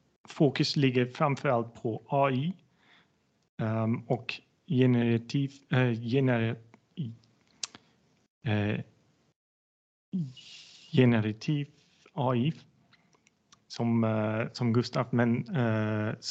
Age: 30-49